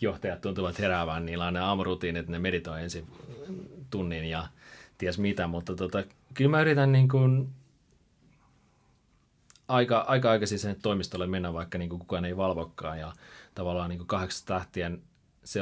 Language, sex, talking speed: Finnish, male, 140 wpm